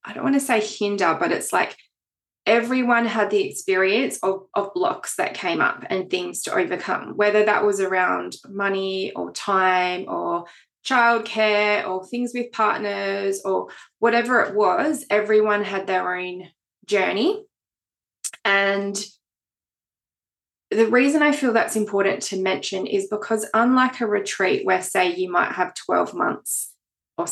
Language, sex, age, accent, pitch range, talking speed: English, female, 20-39, Australian, 190-260 Hz, 145 wpm